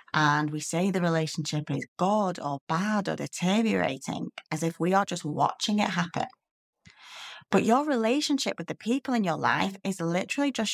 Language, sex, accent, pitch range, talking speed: English, female, British, 170-240 Hz, 175 wpm